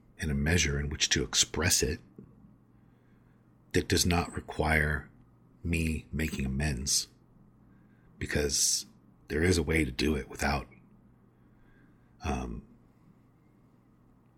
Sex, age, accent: male, 50-69, American